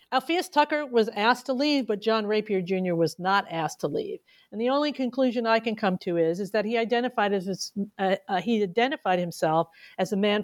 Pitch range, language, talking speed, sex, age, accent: 195-235 Hz, English, 215 wpm, female, 50-69, American